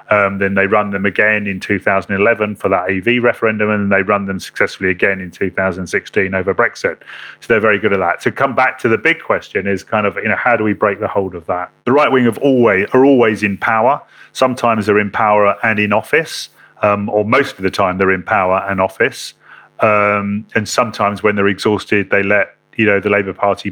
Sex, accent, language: male, British, English